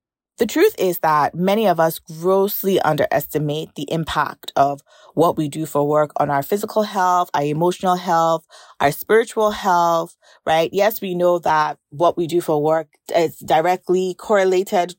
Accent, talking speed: American, 160 wpm